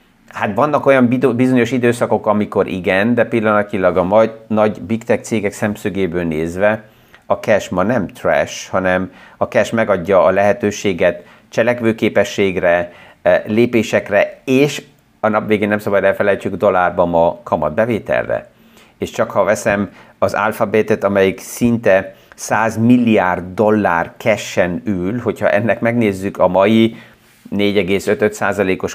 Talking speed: 120 wpm